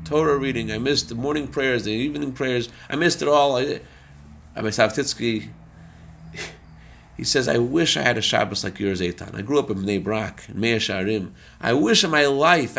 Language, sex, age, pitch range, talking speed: English, male, 40-59, 100-155 Hz, 190 wpm